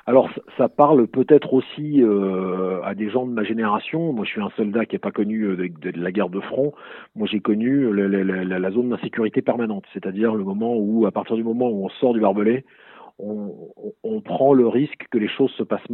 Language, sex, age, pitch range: French, male, 40-59, 105-130 Hz